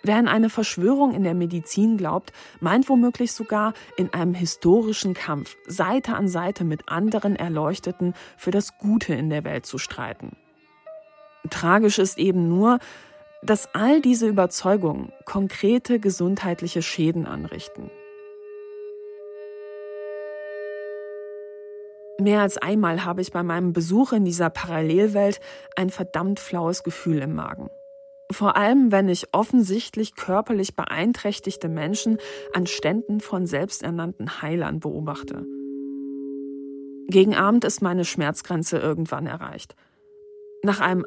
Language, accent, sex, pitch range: German, German, female, 170-220 Hz